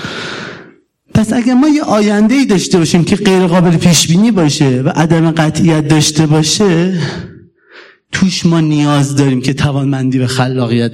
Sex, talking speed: male, 135 wpm